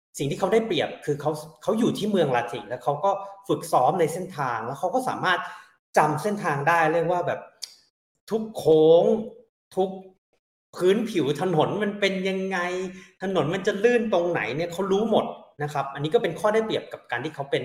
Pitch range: 140-195 Hz